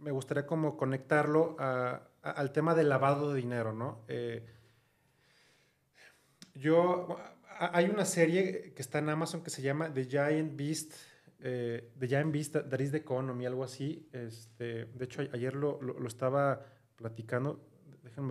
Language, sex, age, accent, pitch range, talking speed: Spanish, male, 30-49, Mexican, 125-160 Hz, 165 wpm